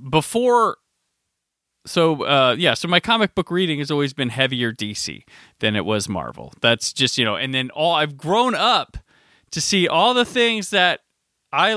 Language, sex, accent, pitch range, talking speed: English, male, American, 130-185 Hz, 180 wpm